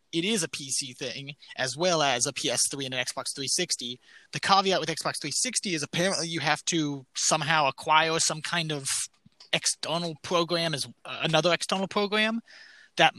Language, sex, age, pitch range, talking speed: English, male, 20-39, 140-175 Hz, 165 wpm